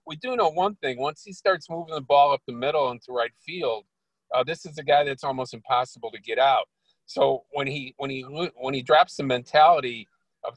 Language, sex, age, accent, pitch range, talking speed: English, male, 50-69, American, 115-150 Hz, 220 wpm